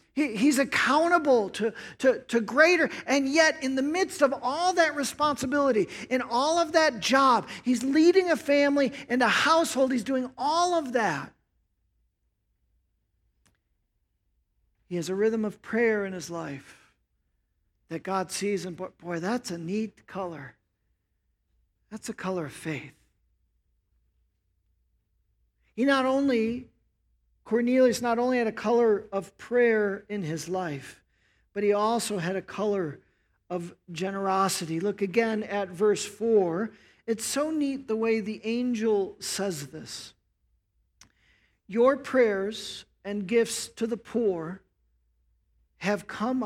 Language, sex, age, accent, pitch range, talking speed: English, male, 50-69, American, 160-245 Hz, 130 wpm